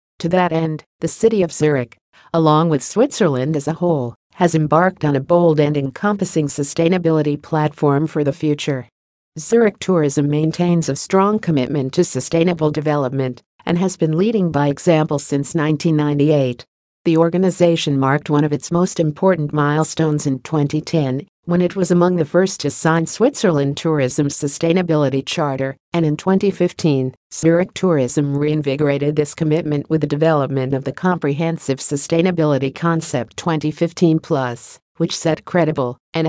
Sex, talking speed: female, 140 wpm